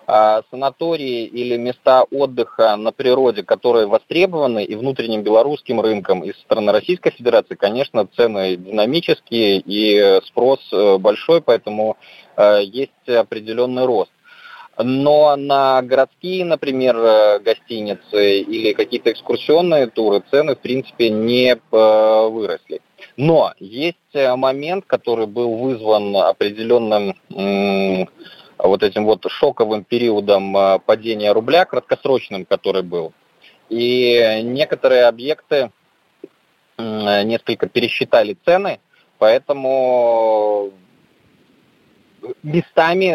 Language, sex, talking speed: Russian, male, 90 wpm